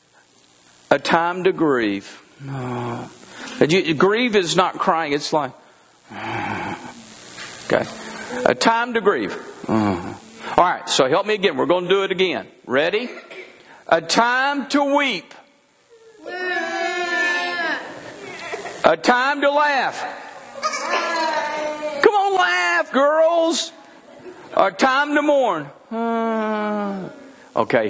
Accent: American